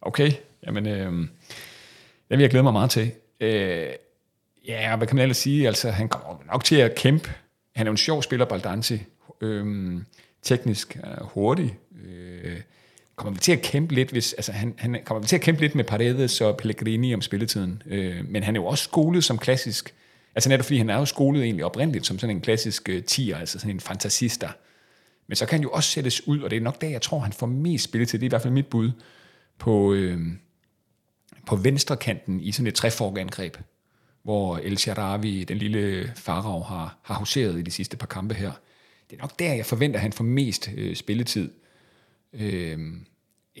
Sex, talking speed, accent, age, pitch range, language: male, 195 wpm, native, 30-49, 100-125 Hz, Danish